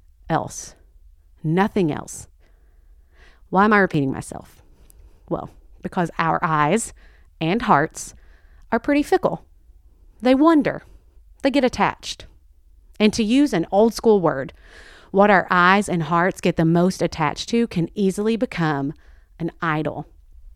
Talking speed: 130 wpm